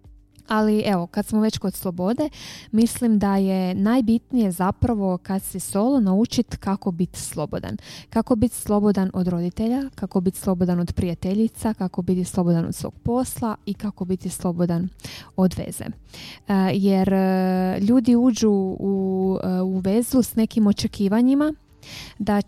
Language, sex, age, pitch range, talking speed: Croatian, female, 20-39, 190-220 Hz, 135 wpm